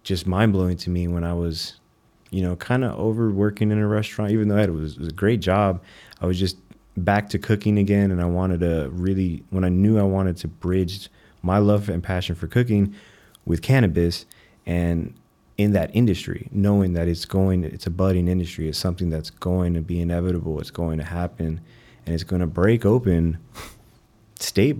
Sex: male